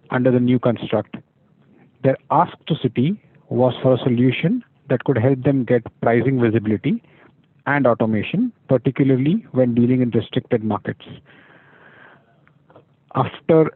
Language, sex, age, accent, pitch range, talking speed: English, male, 50-69, Indian, 125-150 Hz, 120 wpm